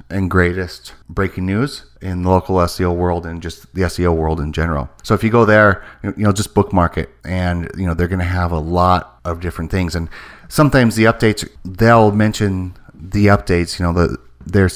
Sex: male